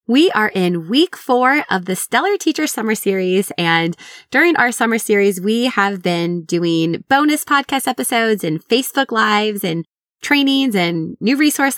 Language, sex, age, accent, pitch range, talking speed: English, female, 20-39, American, 190-265 Hz, 160 wpm